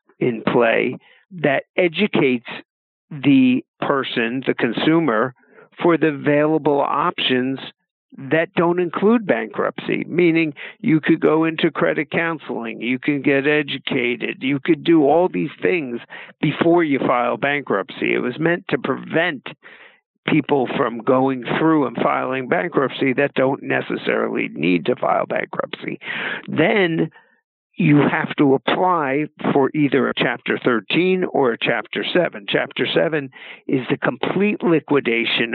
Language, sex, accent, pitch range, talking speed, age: English, male, American, 135-185 Hz, 130 wpm, 50-69